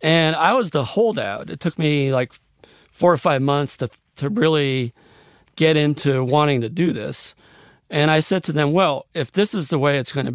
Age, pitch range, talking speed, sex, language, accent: 40-59, 135-160 Hz, 210 wpm, male, English, American